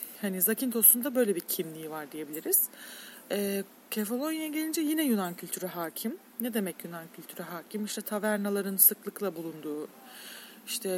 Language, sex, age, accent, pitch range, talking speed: Turkish, female, 40-59, native, 185-235 Hz, 135 wpm